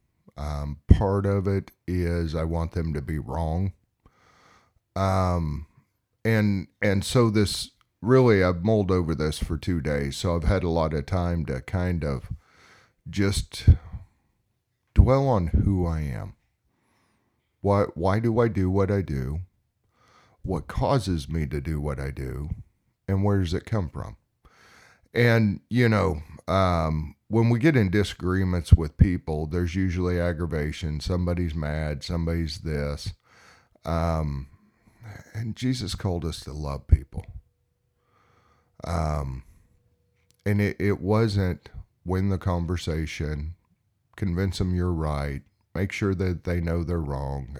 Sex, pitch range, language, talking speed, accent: male, 80-100 Hz, English, 135 wpm, American